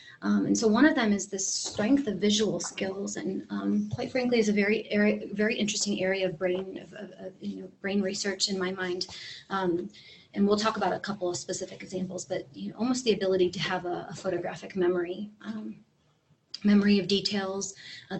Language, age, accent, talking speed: English, 30-49, American, 205 wpm